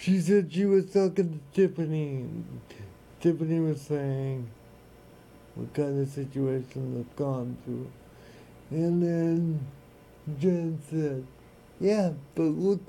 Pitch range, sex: 130-165 Hz, male